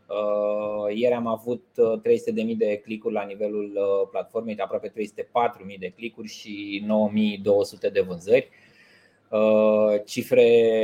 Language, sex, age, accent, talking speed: Romanian, male, 20-39, native, 105 wpm